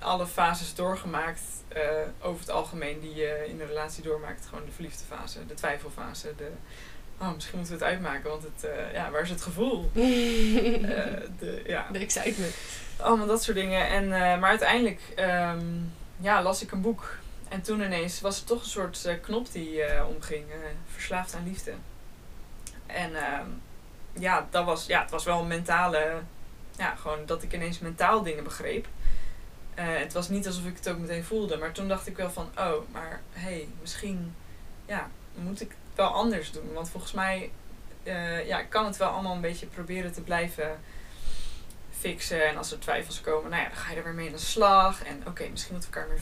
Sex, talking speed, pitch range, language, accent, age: female, 205 wpm, 165-190 Hz, Dutch, Dutch, 20-39